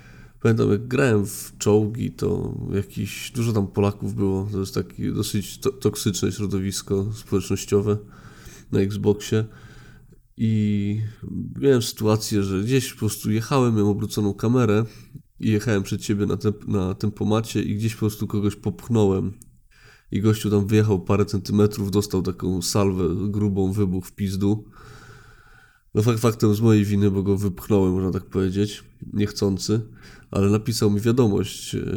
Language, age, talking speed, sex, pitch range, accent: Polish, 20-39, 140 wpm, male, 100-110 Hz, native